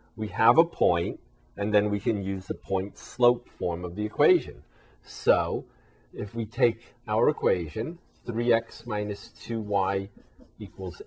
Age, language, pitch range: 40-59, English, 95-120 Hz